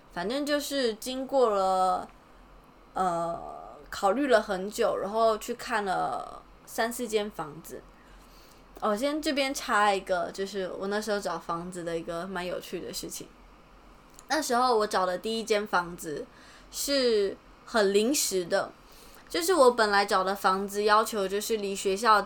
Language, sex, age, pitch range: Chinese, female, 20-39, 185-240 Hz